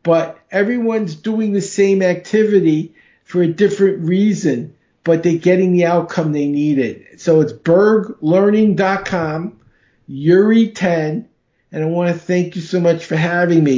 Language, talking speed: English, 145 wpm